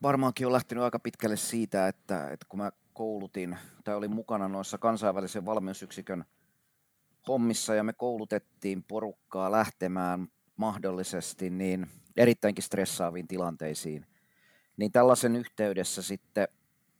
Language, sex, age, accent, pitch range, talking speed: Finnish, male, 30-49, native, 95-115 Hz, 110 wpm